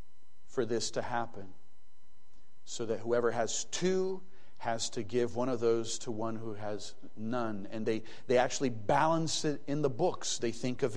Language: English